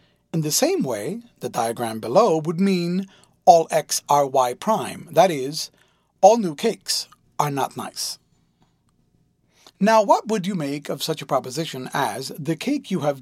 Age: 40-59